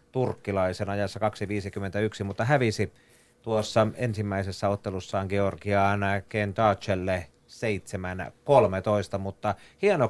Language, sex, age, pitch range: Finnish, male, 30-49, 100-115 Hz